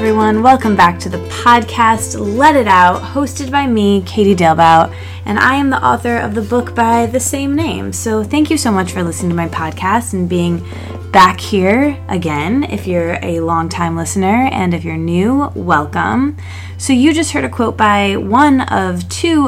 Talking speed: 190 wpm